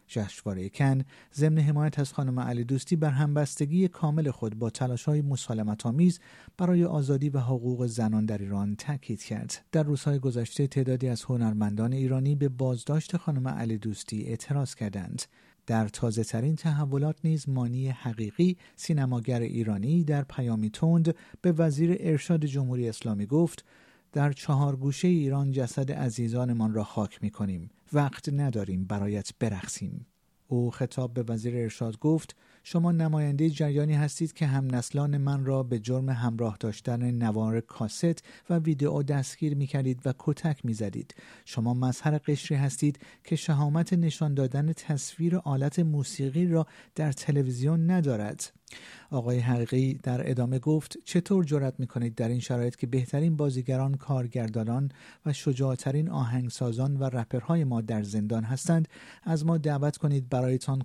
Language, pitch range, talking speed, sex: Persian, 120-150 Hz, 140 wpm, male